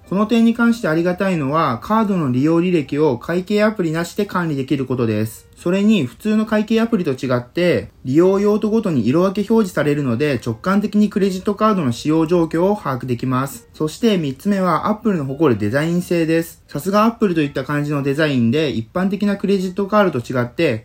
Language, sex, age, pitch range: Japanese, male, 20-39, 135-200 Hz